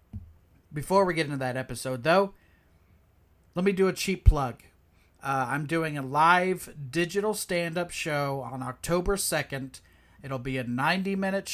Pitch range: 130-180 Hz